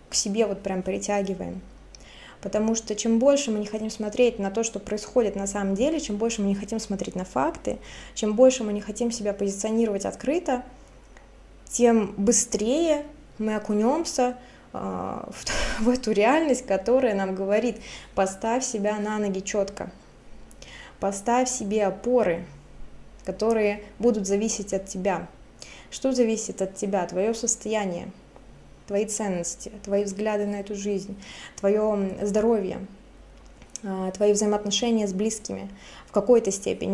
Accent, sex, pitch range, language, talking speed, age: native, female, 200-235 Hz, Russian, 135 wpm, 20-39